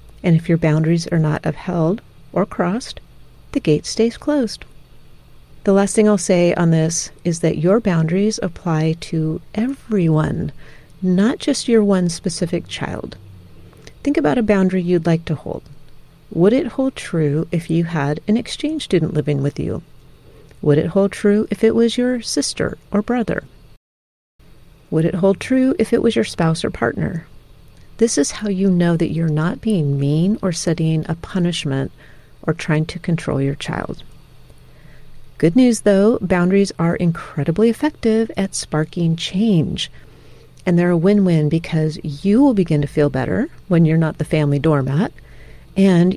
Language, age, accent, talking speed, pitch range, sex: English, 40-59, American, 160 wpm, 155-200 Hz, female